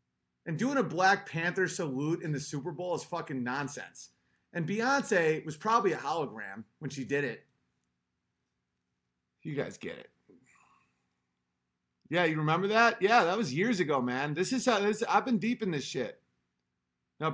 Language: English